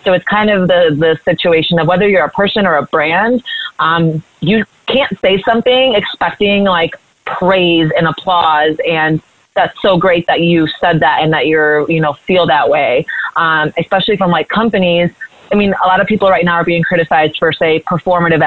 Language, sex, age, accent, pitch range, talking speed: English, female, 30-49, American, 160-195 Hz, 195 wpm